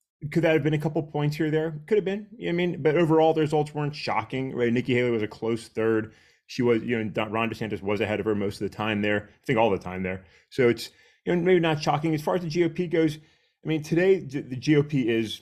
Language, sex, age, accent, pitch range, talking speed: English, male, 30-49, American, 110-150 Hz, 270 wpm